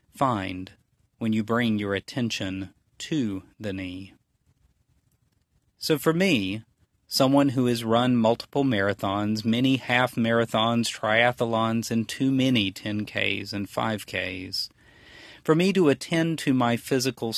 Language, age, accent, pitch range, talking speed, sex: English, 40-59, American, 100-120 Hz, 115 wpm, male